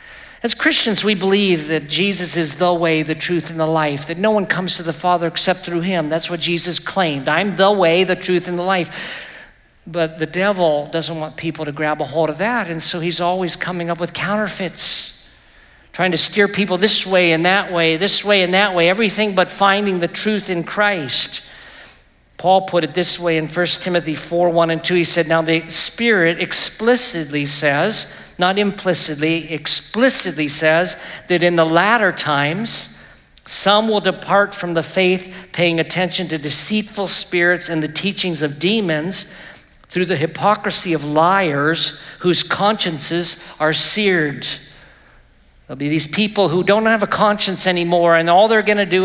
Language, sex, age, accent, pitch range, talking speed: English, male, 50-69, American, 165-195 Hz, 175 wpm